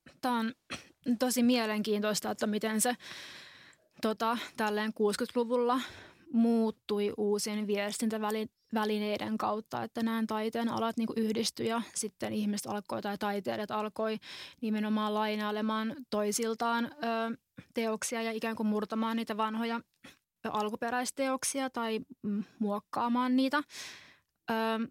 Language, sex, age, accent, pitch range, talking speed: Finnish, female, 20-39, native, 205-230 Hz, 105 wpm